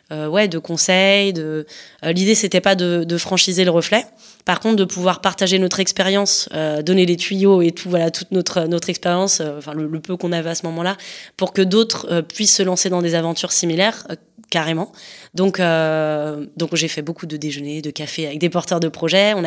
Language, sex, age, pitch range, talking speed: French, female, 20-39, 160-195 Hz, 215 wpm